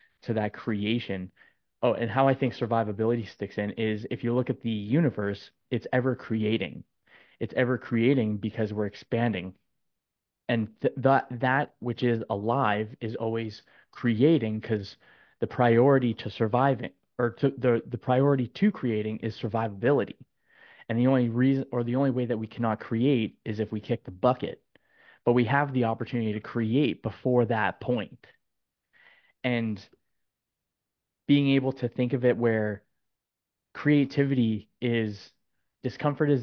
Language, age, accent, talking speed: English, 20-39, American, 150 wpm